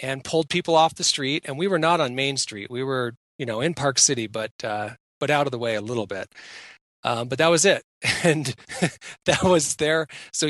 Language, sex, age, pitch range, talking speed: English, male, 40-59, 120-150 Hz, 230 wpm